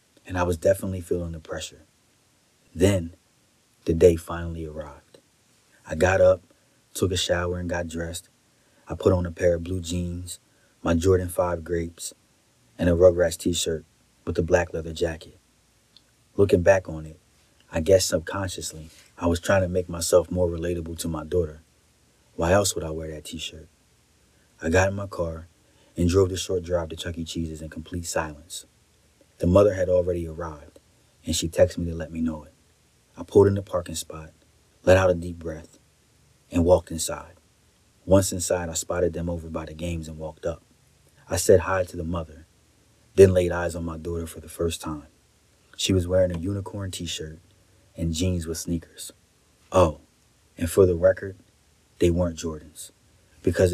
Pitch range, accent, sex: 80-95 Hz, American, male